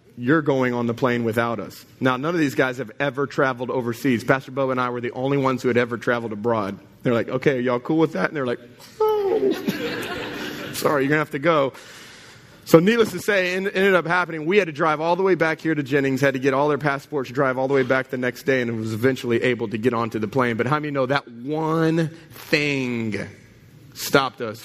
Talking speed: 240 wpm